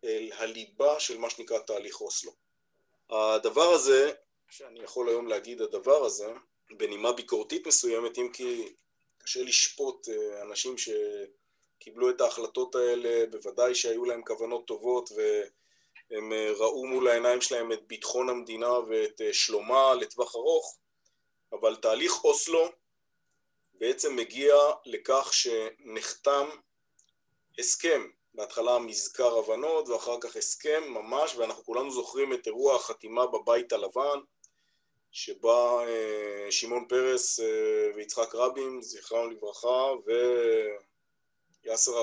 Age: 20-39